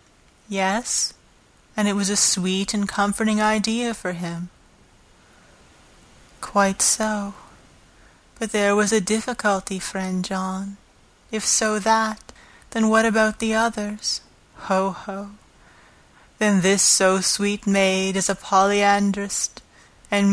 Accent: American